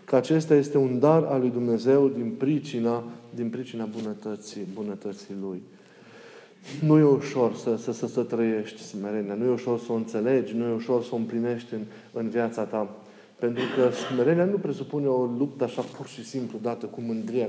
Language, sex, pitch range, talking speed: Romanian, male, 120-145 Hz, 180 wpm